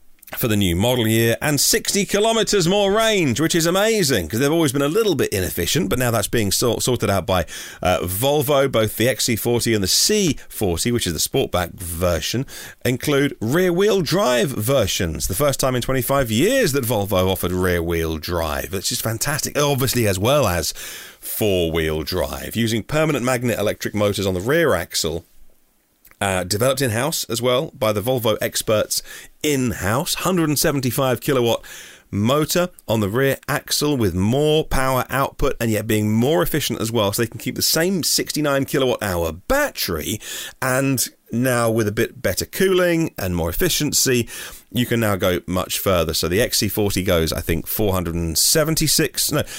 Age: 40-59